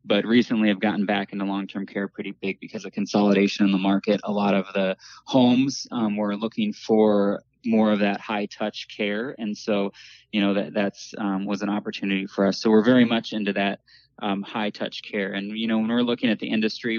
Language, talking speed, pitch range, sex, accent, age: English, 210 wpm, 100-110 Hz, male, American, 20-39